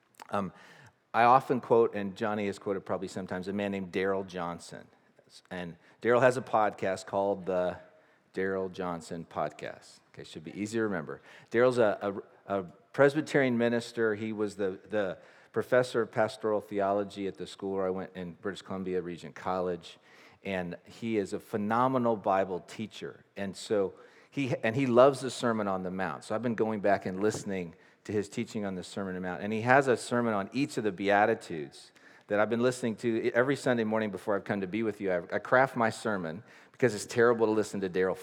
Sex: male